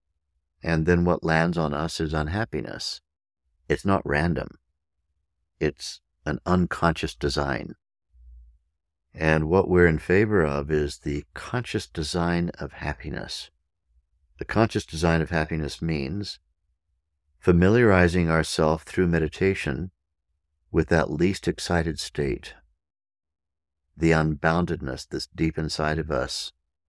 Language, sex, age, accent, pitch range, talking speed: English, male, 60-79, American, 75-85 Hz, 110 wpm